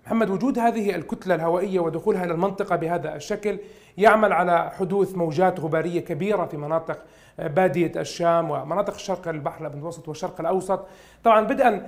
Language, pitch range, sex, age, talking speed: Arabic, 165-195 Hz, male, 40-59, 140 wpm